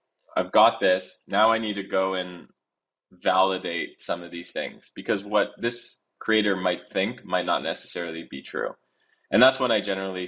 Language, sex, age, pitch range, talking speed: English, male, 20-39, 85-100 Hz, 175 wpm